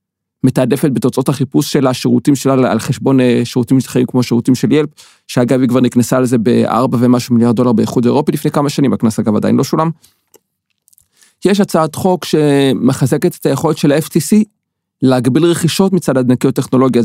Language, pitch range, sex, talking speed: Hebrew, 125-170 Hz, male, 160 wpm